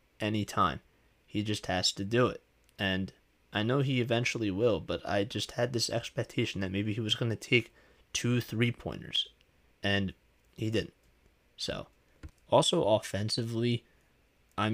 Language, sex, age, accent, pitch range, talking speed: English, male, 30-49, American, 95-120 Hz, 145 wpm